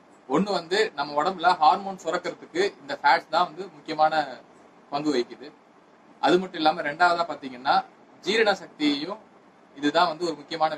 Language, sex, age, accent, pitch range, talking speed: Tamil, male, 30-49, native, 135-180 Hz, 130 wpm